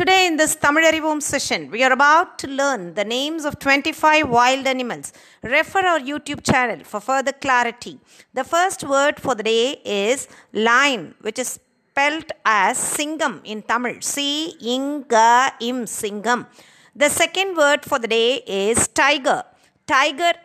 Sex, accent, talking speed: female, native, 160 wpm